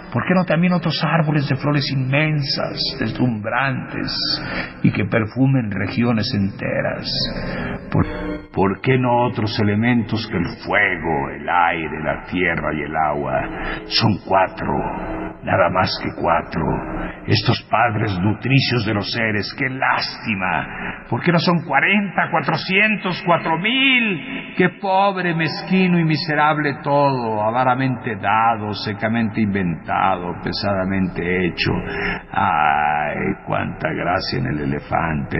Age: 50-69